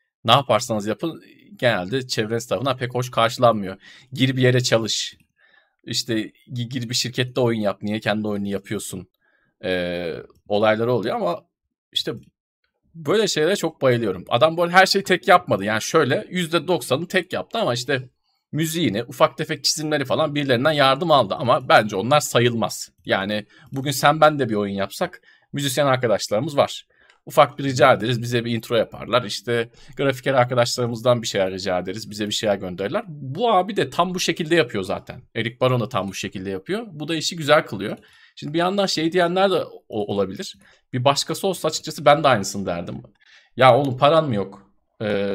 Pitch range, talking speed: 110-155 Hz, 170 wpm